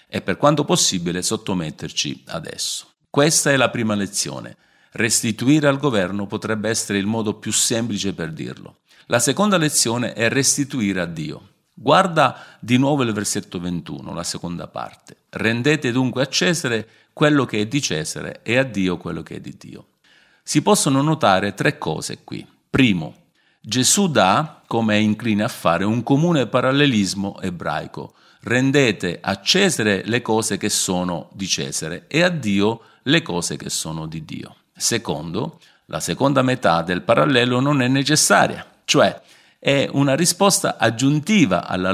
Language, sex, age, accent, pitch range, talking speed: Italian, male, 50-69, native, 100-140 Hz, 155 wpm